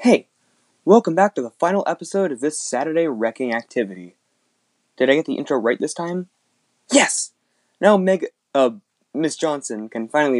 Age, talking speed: 20-39, 160 wpm